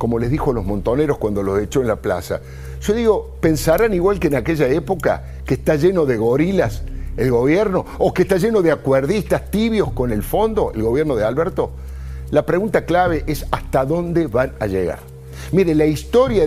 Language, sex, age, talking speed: Spanish, male, 50-69, 190 wpm